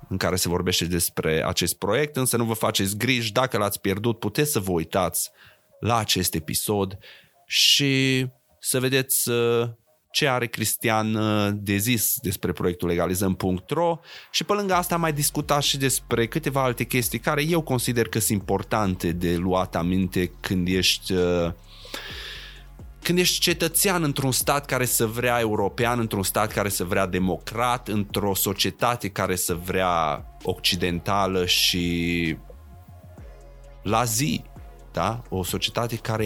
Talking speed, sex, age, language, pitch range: 140 wpm, male, 20-39, Romanian, 90-120 Hz